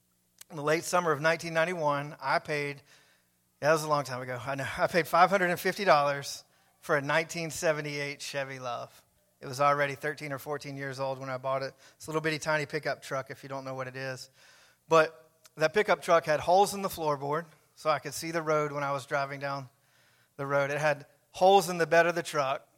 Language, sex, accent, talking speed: English, male, American, 215 wpm